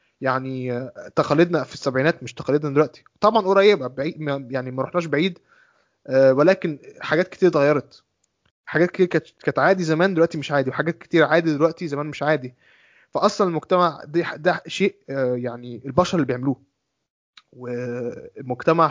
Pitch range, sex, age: 130-170 Hz, male, 20-39